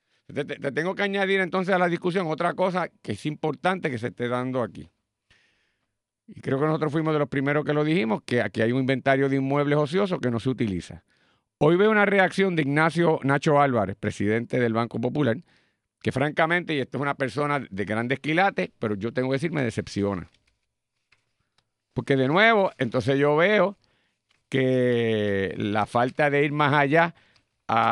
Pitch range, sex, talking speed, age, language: 125-185 Hz, male, 180 wpm, 50-69, Spanish